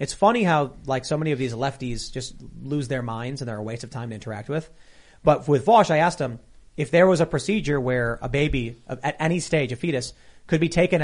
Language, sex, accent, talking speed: English, male, American, 240 wpm